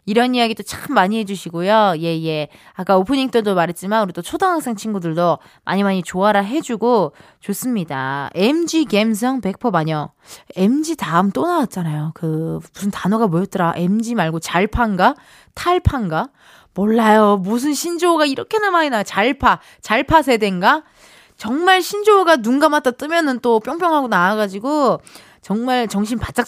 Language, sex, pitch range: Korean, female, 185-270 Hz